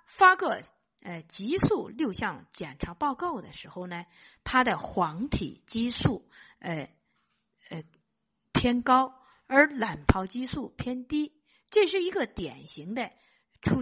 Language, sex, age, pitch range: Chinese, female, 50-69, 185-270 Hz